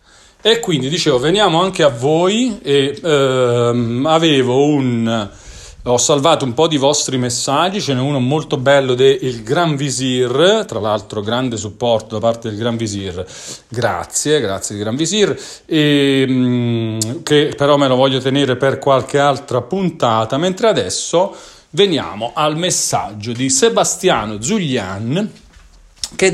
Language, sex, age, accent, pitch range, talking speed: Italian, male, 40-59, native, 110-150 Hz, 135 wpm